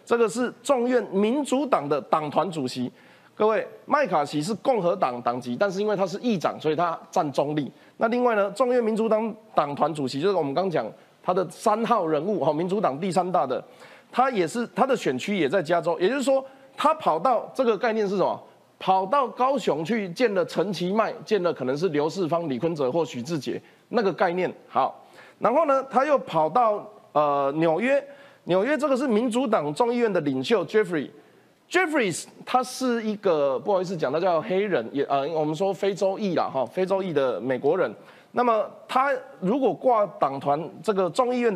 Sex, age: male, 30-49